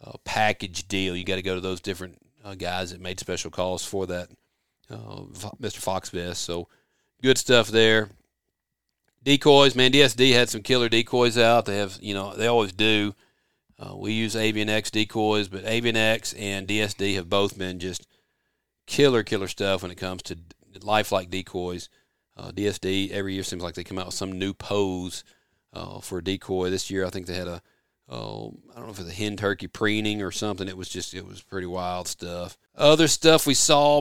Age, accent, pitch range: 40-59, American, 95-115 Hz